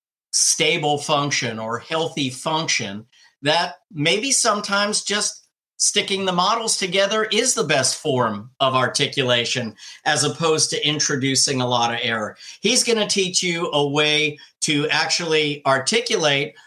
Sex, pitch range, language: male, 130-165 Hz, English